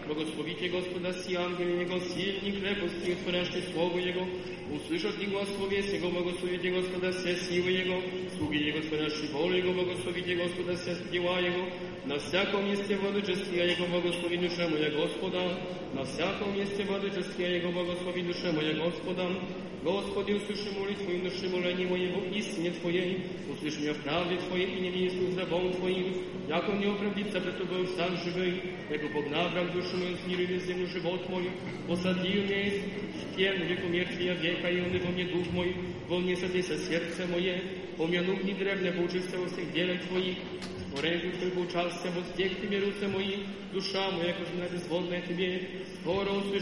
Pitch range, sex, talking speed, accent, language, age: 175-185 Hz, male, 120 wpm, native, Polish, 40-59